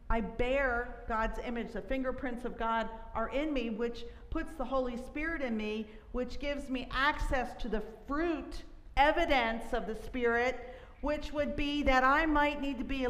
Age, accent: 50-69, American